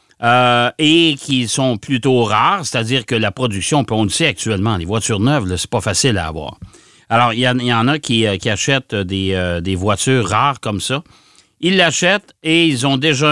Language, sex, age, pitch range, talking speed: French, male, 60-79, 115-155 Hz, 205 wpm